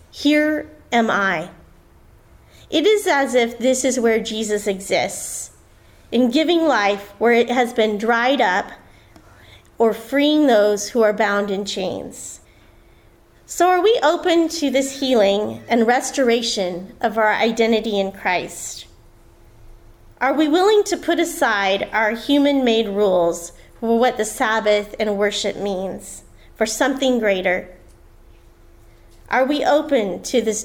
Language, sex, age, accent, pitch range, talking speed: English, female, 30-49, American, 170-250 Hz, 135 wpm